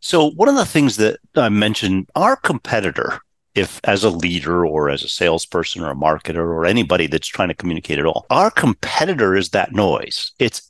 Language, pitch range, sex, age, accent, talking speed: English, 95-125 Hz, male, 50-69, American, 195 wpm